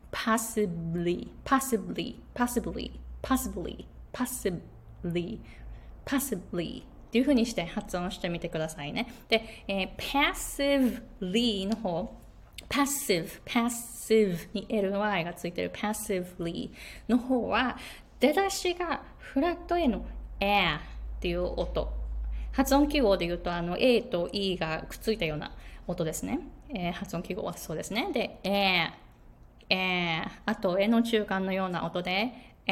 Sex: female